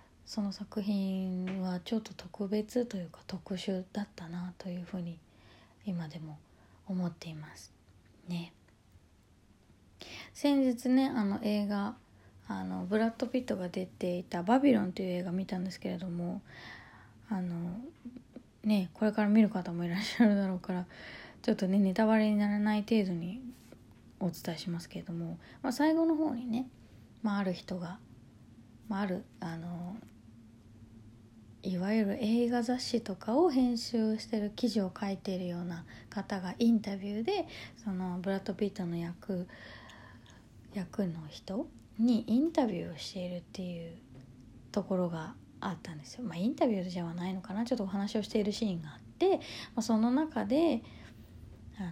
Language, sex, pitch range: Japanese, female, 165-220 Hz